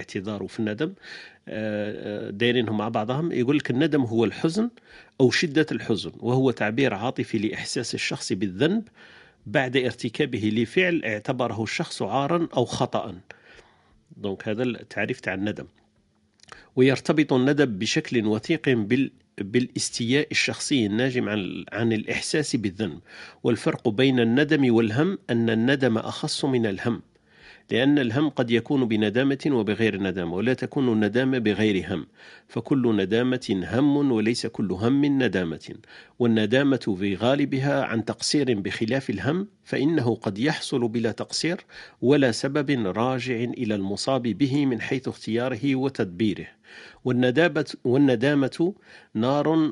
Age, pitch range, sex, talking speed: 50-69, 110-140 Hz, male, 115 wpm